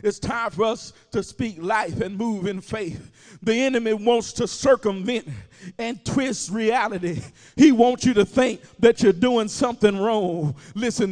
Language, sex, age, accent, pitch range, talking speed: English, male, 40-59, American, 190-250 Hz, 160 wpm